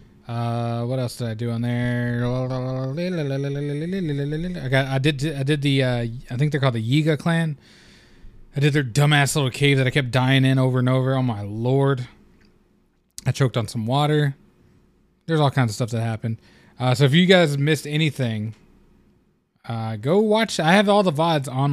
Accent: American